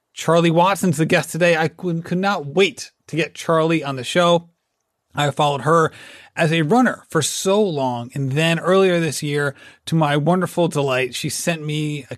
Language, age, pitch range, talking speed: English, 30-49, 145-180 Hz, 180 wpm